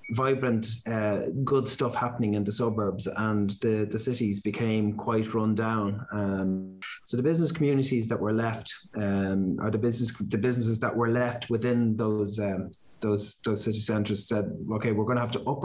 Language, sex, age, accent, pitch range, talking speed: English, male, 30-49, Irish, 105-120 Hz, 185 wpm